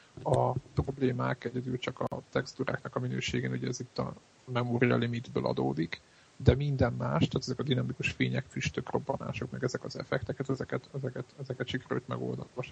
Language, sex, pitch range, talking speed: Hungarian, male, 120-135 Hz, 165 wpm